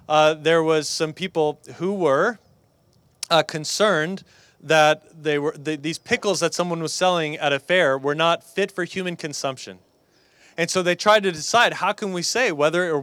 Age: 20-39